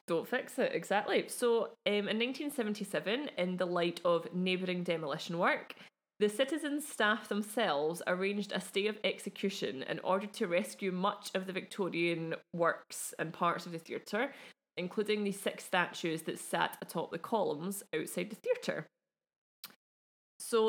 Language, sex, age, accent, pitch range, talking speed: English, female, 20-39, British, 170-215 Hz, 150 wpm